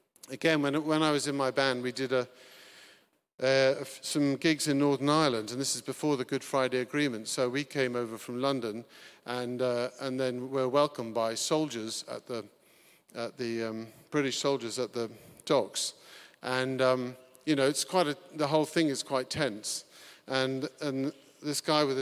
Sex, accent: male, British